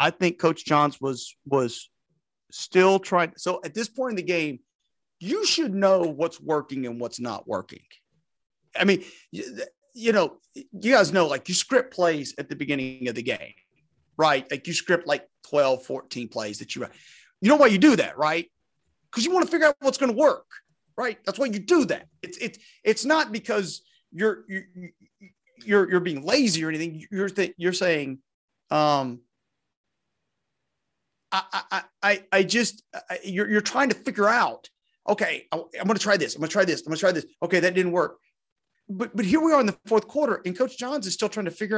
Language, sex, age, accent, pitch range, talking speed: English, male, 40-59, American, 165-250 Hz, 210 wpm